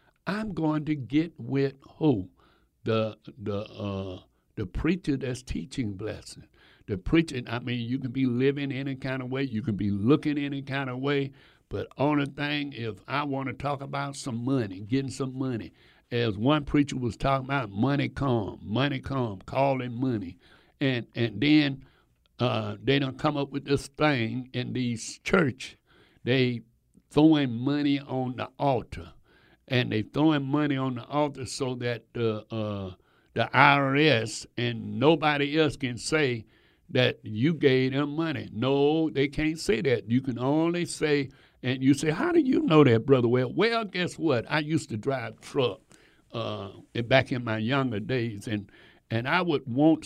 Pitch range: 115-145 Hz